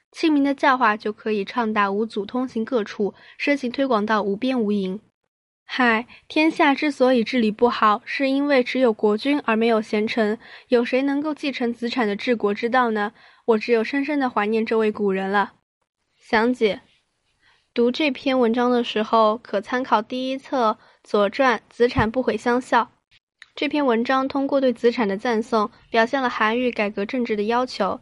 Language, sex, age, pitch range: Chinese, female, 10-29, 210-255 Hz